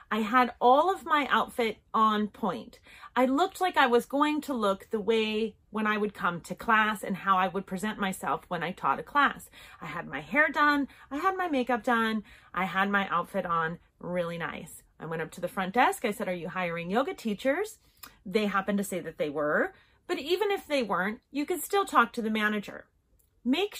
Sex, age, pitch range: female, 30-49, 200-275 Hz